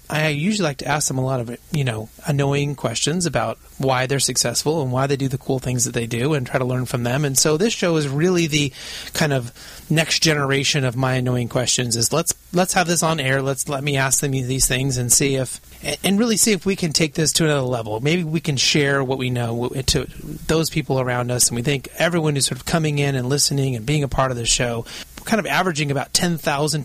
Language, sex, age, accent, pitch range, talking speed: English, male, 30-49, American, 130-160 Hz, 250 wpm